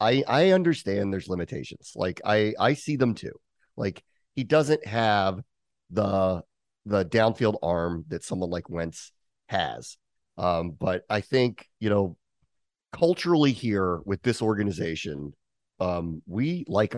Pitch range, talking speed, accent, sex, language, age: 95-125 Hz, 135 wpm, American, male, English, 30-49